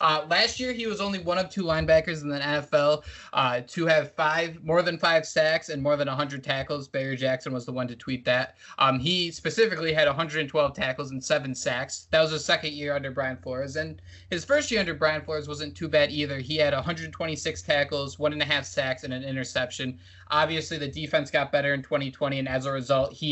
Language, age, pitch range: English, 20-39, 140-180 Hz